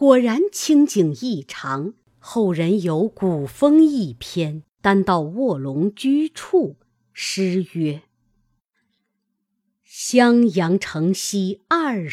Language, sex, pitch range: Chinese, female, 180-285 Hz